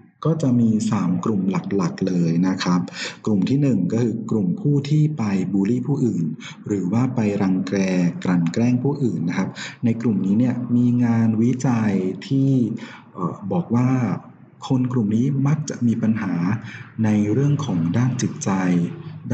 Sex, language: male, Thai